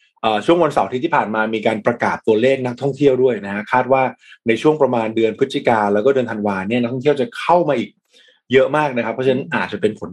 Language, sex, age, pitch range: Thai, male, 20-39, 115-150 Hz